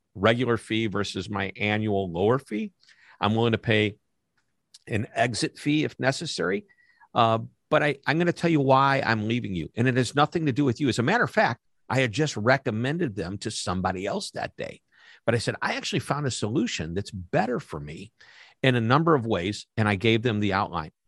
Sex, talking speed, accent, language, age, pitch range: male, 210 wpm, American, English, 50-69, 100-140 Hz